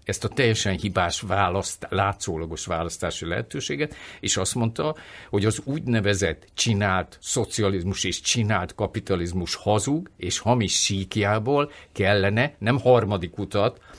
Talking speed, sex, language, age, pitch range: 115 wpm, male, Hungarian, 50-69, 95-115 Hz